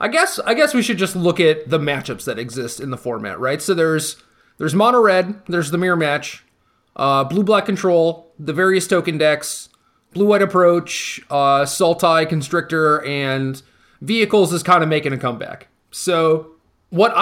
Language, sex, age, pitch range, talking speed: English, male, 30-49, 145-175 Hz, 165 wpm